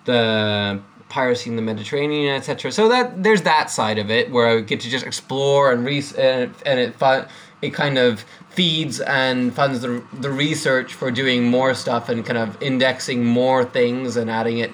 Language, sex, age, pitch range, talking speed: English, male, 20-39, 125-160 Hz, 185 wpm